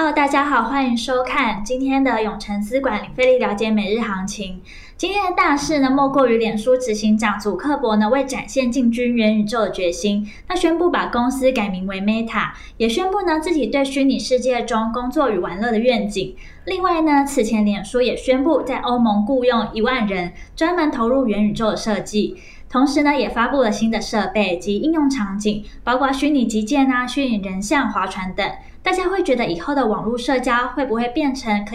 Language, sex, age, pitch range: Chinese, female, 10-29, 210-270 Hz